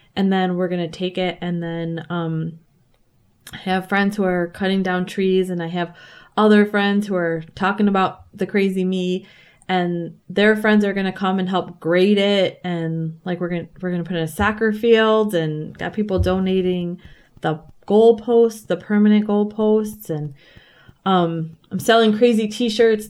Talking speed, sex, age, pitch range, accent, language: 180 wpm, female, 20-39, 170-205 Hz, American, English